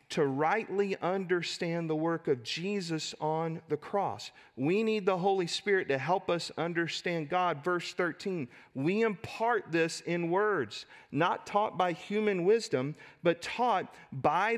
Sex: male